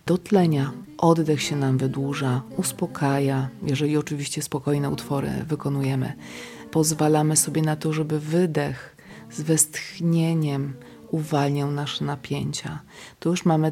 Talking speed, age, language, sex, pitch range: 110 wpm, 30-49, Polish, female, 140-175 Hz